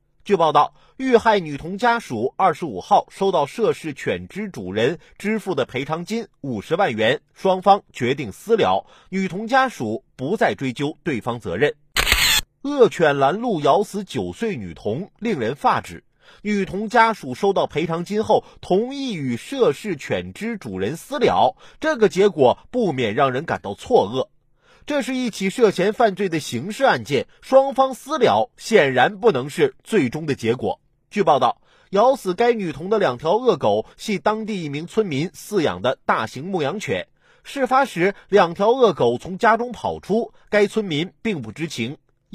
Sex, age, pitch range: male, 30-49, 175-235 Hz